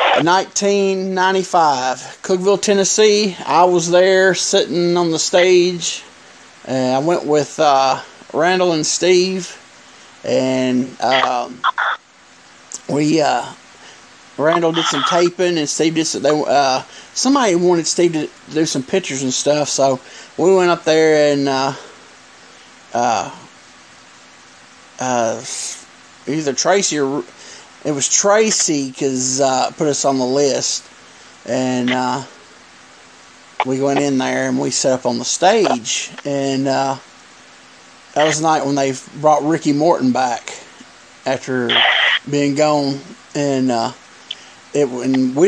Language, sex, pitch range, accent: English, male, 135-175 Hz, American